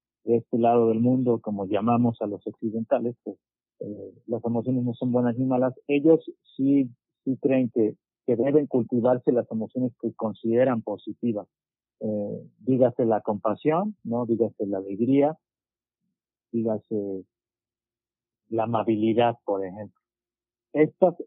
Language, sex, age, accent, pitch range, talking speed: Spanish, male, 40-59, Mexican, 110-125 Hz, 130 wpm